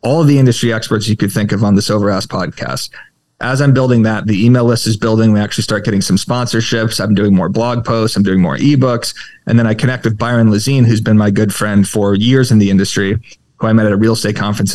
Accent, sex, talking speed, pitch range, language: American, male, 250 wpm, 105-120 Hz, English